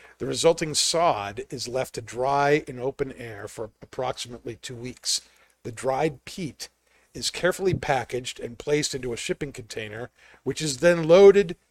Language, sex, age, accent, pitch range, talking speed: English, male, 50-69, American, 125-160 Hz, 155 wpm